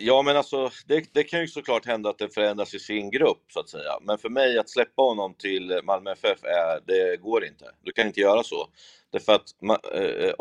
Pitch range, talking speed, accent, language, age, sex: 100-145 Hz, 240 wpm, native, Swedish, 30-49, male